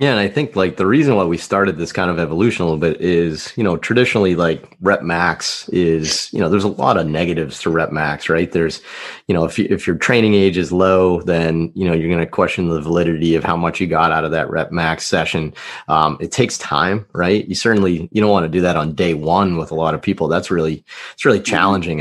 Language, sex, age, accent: English, male, 30-49, American